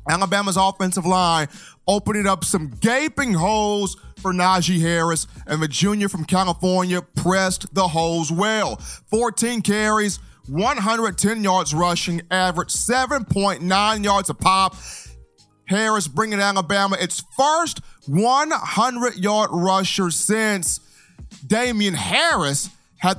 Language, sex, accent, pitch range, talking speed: English, male, American, 160-200 Hz, 105 wpm